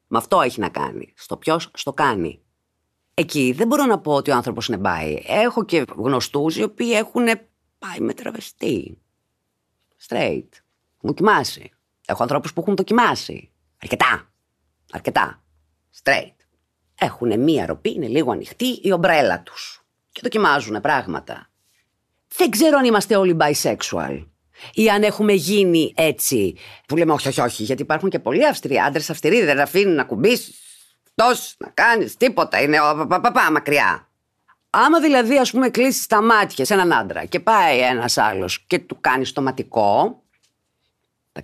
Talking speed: 155 wpm